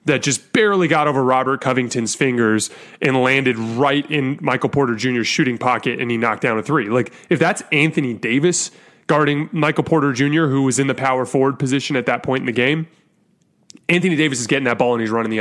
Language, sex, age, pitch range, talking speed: English, male, 30-49, 120-150 Hz, 215 wpm